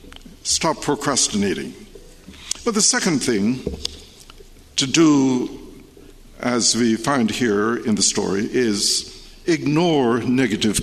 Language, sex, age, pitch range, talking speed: English, male, 60-79, 130-190 Hz, 100 wpm